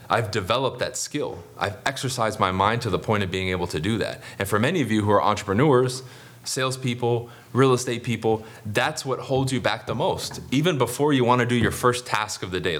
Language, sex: English, male